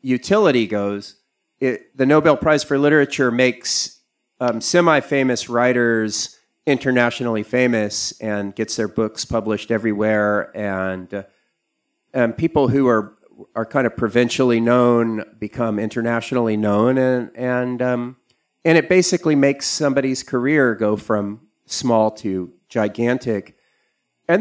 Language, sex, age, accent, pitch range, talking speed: English, male, 40-59, American, 110-140 Hz, 125 wpm